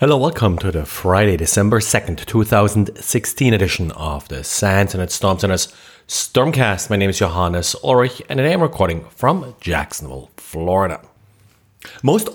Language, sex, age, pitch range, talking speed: English, male, 30-49, 105-140 Hz, 145 wpm